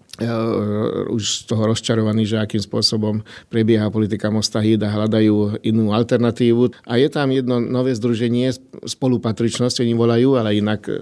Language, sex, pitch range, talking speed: Slovak, male, 110-120 Hz, 135 wpm